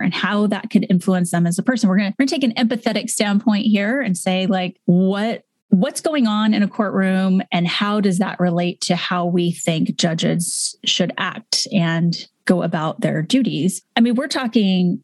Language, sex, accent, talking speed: English, female, American, 190 wpm